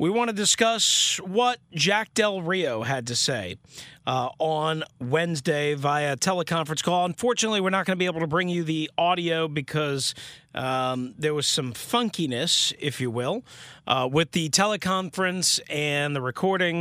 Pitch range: 140-190 Hz